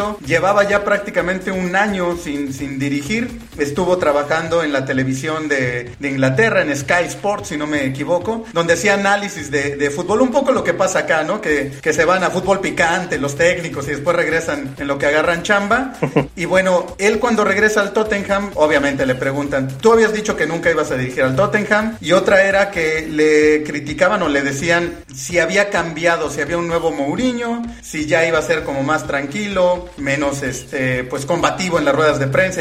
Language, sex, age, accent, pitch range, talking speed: Spanish, male, 40-59, Mexican, 145-205 Hz, 195 wpm